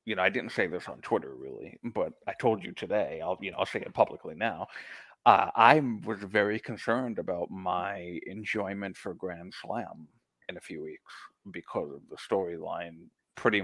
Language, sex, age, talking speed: English, male, 30-49, 185 wpm